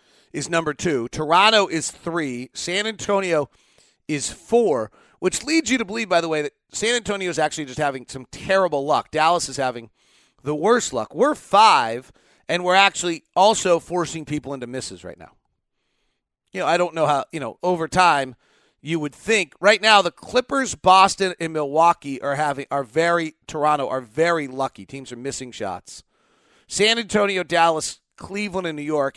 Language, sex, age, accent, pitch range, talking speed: English, male, 40-59, American, 130-180 Hz, 175 wpm